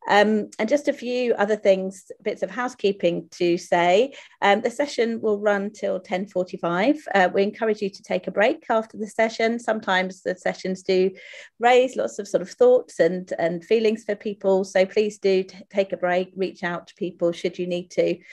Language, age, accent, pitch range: English, 40-59, British, 175-215 Hz